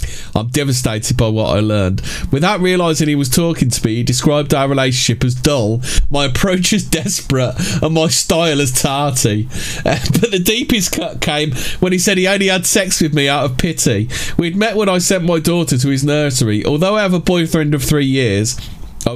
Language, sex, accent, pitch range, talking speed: English, male, British, 120-160 Hz, 200 wpm